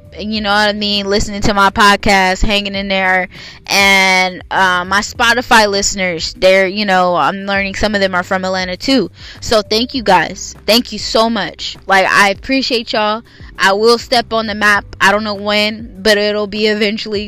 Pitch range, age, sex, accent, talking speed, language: 180-215 Hz, 10-29, female, American, 190 wpm, English